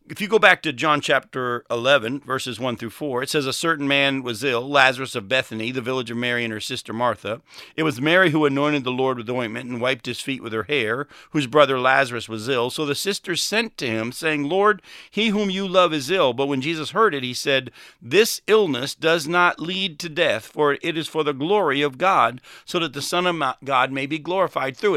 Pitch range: 130-165 Hz